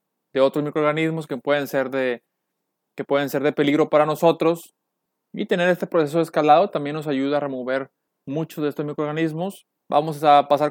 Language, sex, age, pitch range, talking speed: Spanish, male, 20-39, 140-170 Hz, 180 wpm